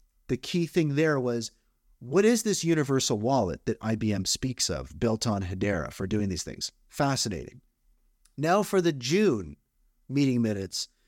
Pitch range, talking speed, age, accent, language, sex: 110-135 Hz, 150 wpm, 30-49, American, English, male